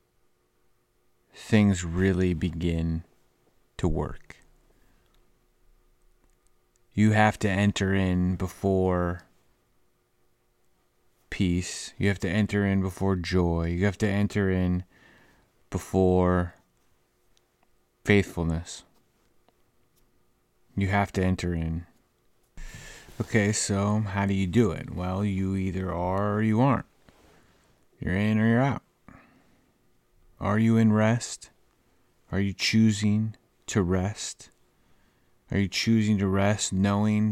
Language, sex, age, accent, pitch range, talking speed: English, male, 30-49, American, 90-105 Hz, 105 wpm